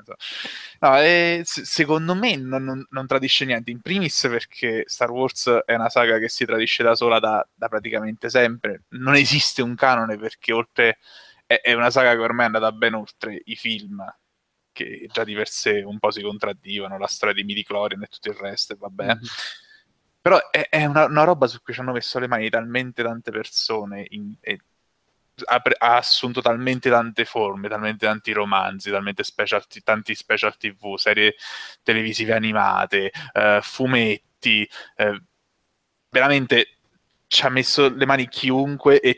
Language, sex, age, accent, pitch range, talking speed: Italian, male, 20-39, native, 110-135 Hz, 165 wpm